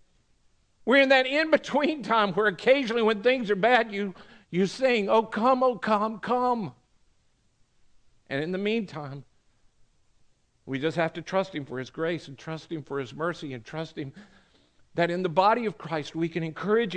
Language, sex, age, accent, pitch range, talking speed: English, male, 50-69, American, 155-220 Hz, 175 wpm